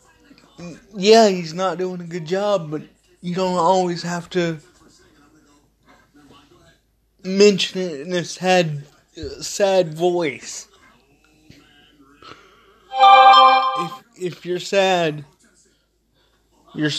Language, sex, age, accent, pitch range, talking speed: English, male, 30-49, American, 150-185 Hz, 90 wpm